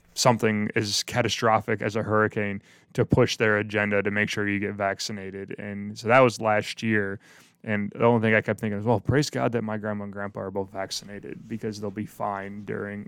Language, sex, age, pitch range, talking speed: English, male, 20-39, 105-120 Hz, 210 wpm